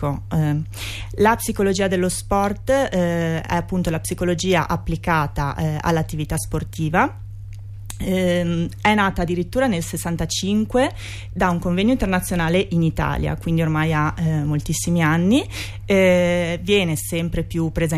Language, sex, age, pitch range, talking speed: Italian, female, 30-49, 155-180 Hz, 120 wpm